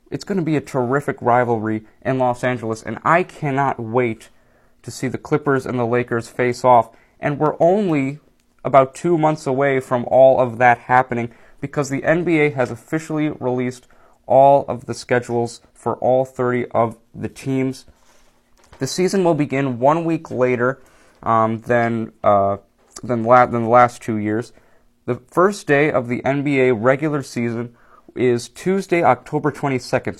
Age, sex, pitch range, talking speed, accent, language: 20-39, male, 120-140 Hz, 160 wpm, American, English